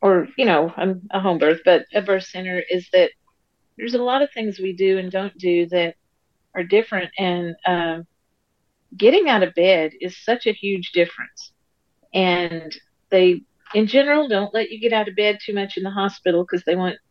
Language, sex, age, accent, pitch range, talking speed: English, female, 40-59, American, 180-220 Hz, 195 wpm